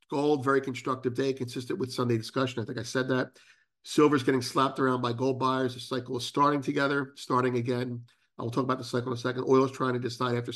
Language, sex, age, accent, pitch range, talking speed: English, male, 50-69, American, 120-145 Hz, 240 wpm